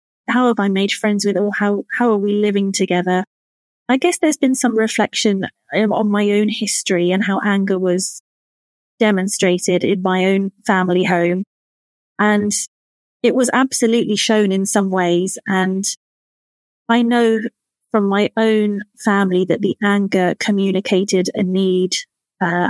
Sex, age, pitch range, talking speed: female, 30-49, 190-230 Hz, 145 wpm